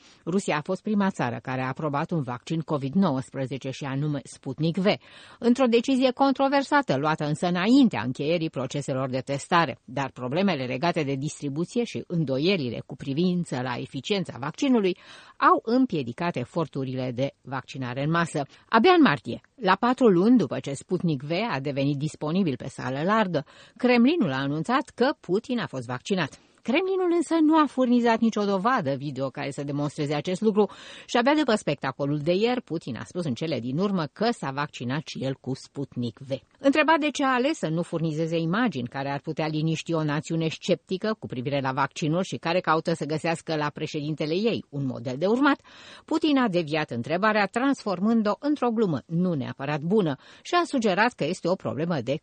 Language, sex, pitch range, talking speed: Romanian, female, 140-225 Hz, 175 wpm